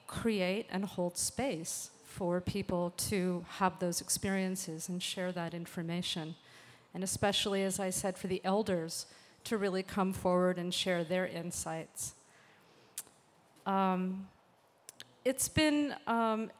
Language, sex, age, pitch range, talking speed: English, female, 40-59, 180-225 Hz, 125 wpm